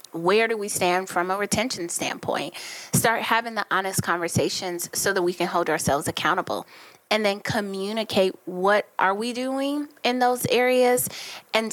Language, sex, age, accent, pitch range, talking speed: English, female, 20-39, American, 175-205 Hz, 160 wpm